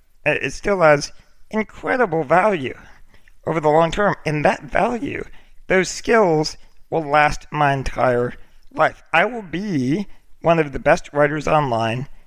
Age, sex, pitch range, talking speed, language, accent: 50-69, male, 130-160 Hz, 135 wpm, English, American